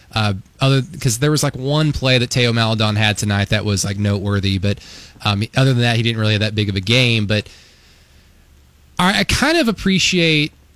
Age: 20-39